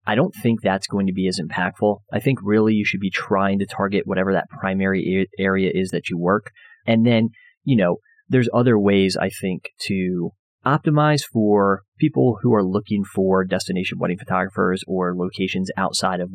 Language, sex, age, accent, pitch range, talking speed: English, male, 30-49, American, 95-115 Hz, 185 wpm